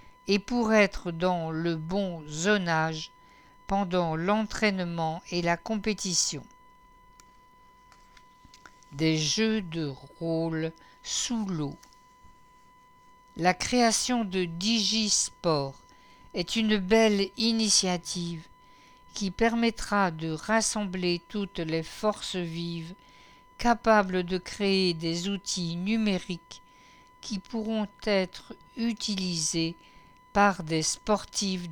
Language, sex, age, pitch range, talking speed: English, female, 60-79, 165-220 Hz, 90 wpm